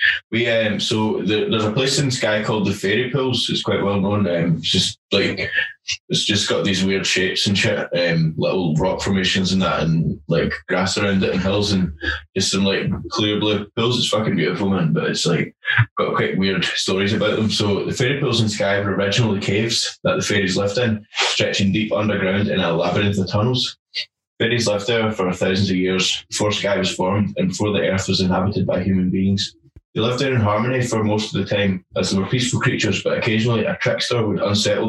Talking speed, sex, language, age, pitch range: 220 wpm, male, English, 20-39, 95-110 Hz